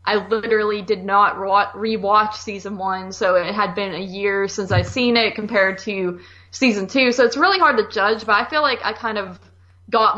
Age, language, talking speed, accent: 20-39, English, 205 wpm, American